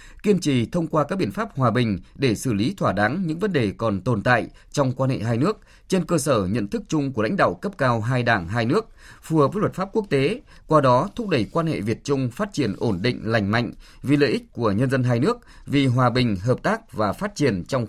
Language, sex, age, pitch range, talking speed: Vietnamese, male, 20-39, 115-150 Hz, 260 wpm